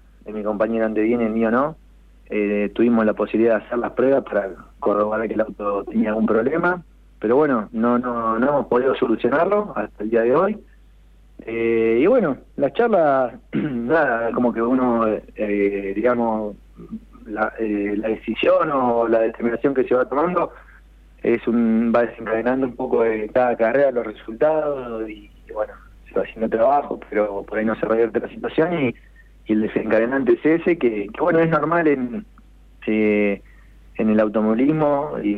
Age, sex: 30-49, male